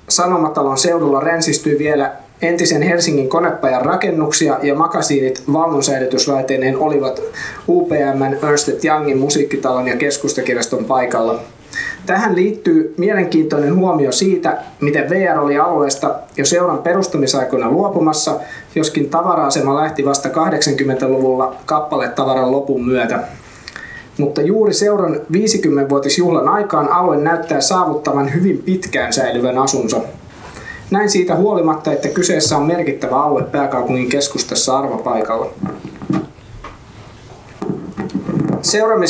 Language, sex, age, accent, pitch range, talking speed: Finnish, male, 20-39, native, 140-180 Hz, 100 wpm